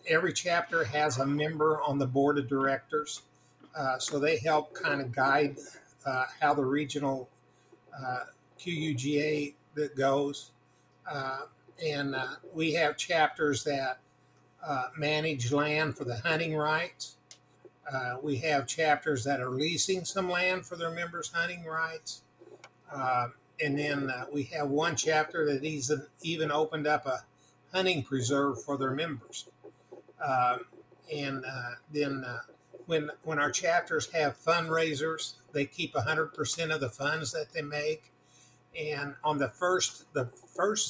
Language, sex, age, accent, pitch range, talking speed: English, male, 60-79, American, 135-155 Hz, 145 wpm